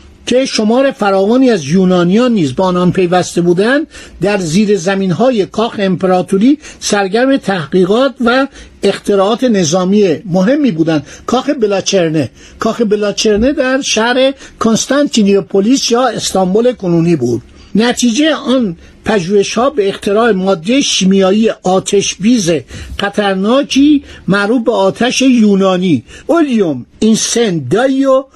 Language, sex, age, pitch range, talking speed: Persian, male, 60-79, 185-245 Hz, 105 wpm